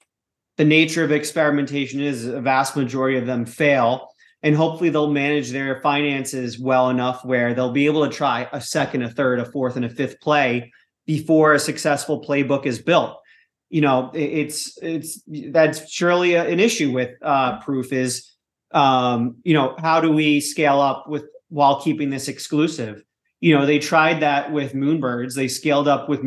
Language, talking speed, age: English, 175 wpm, 30-49